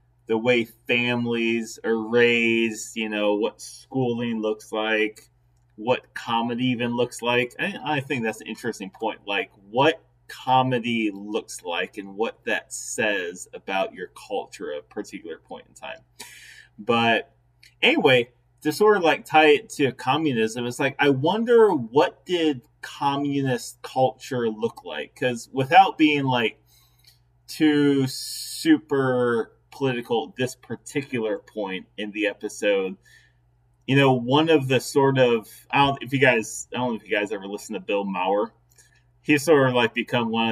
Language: English